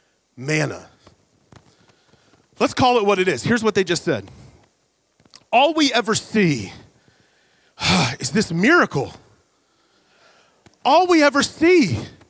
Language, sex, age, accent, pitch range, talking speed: English, male, 30-49, American, 160-260 Hz, 115 wpm